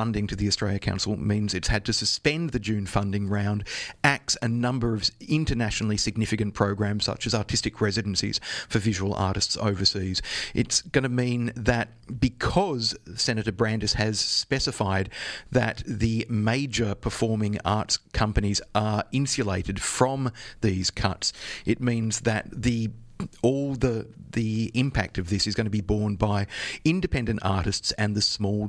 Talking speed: 150 wpm